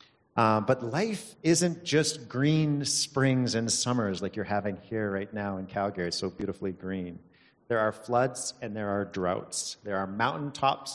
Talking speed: 170 wpm